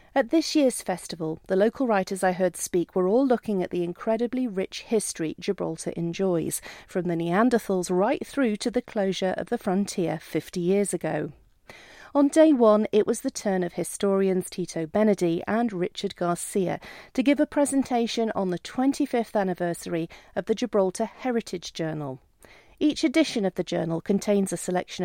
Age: 40-59